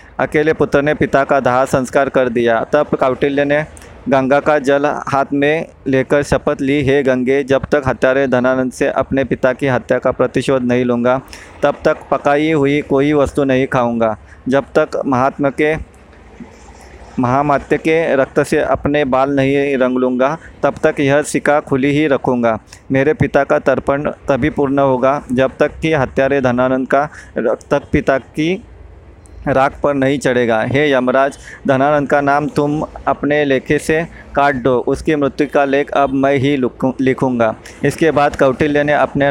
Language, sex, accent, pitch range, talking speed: English, male, Indian, 130-145 Hz, 125 wpm